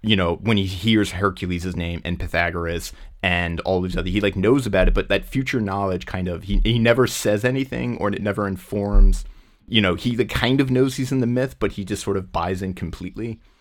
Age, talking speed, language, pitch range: 30-49, 230 wpm, English, 85-105 Hz